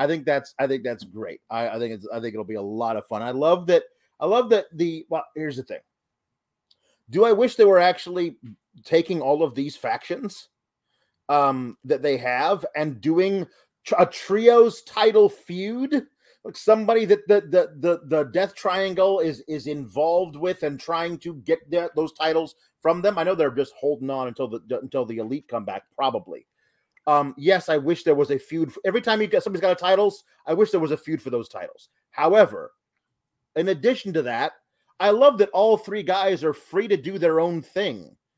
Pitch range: 145-205 Hz